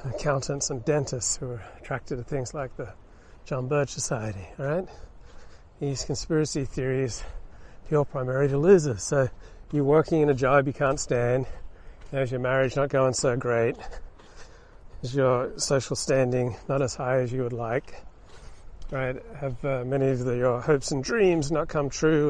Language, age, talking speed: English, 40-59, 165 wpm